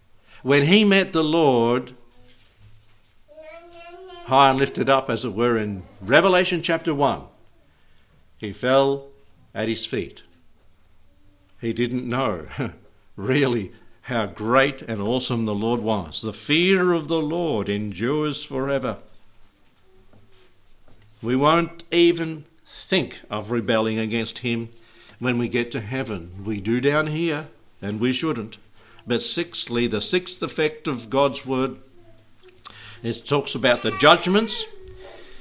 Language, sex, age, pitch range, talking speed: English, male, 60-79, 110-150 Hz, 120 wpm